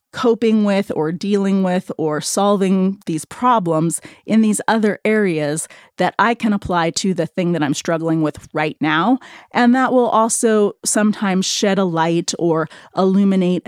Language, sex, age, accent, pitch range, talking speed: English, female, 30-49, American, 175-225 Hz, 160 wpm